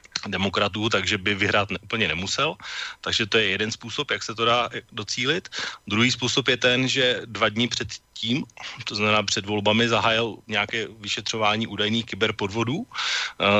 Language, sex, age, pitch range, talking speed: Slovak, male, 30-49, 95-110 Hz, 160 wpm